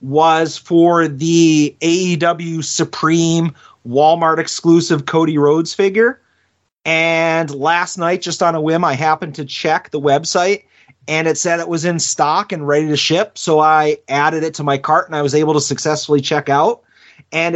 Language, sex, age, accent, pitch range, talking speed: English, male, 30-49, American, 145-170 Hz, 170 wpm